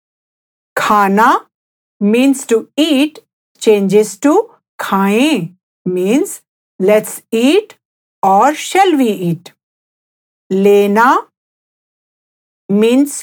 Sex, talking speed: female, 75 wpm